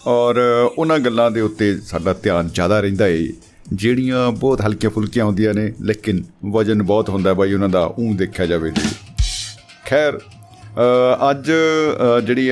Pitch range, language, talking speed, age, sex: 100-120 Hz, Punjabi, 145 wpm, 50-69, male